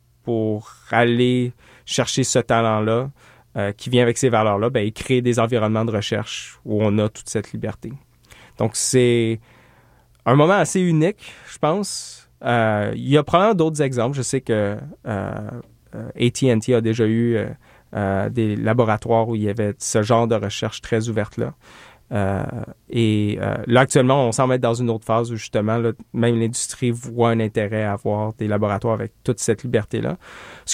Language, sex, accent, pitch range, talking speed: French, male, Canadian, 110-130 Hz, 175 wpm